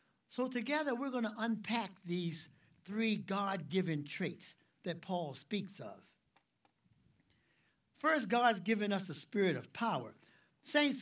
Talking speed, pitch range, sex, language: 125 wpm, 185-260 Hz, male, English